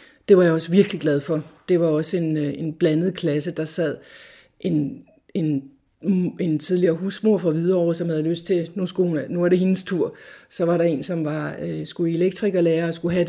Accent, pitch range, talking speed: native, 170-205 Hz, 220 wpm